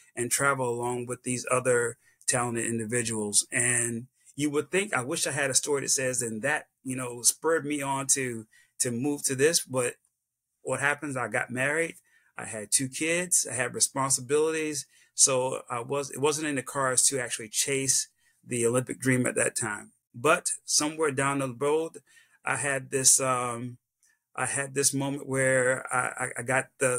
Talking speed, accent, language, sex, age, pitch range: 180 wpm, American, English, male, 30-49, 125-140 Hz